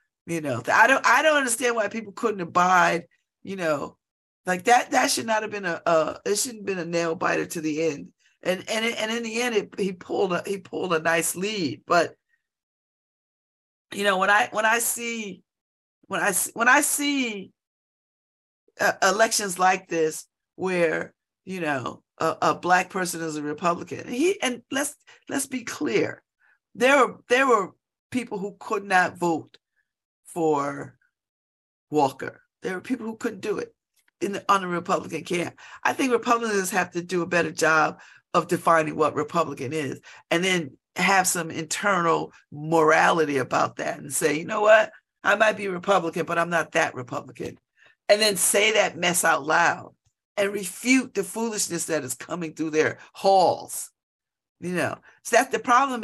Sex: female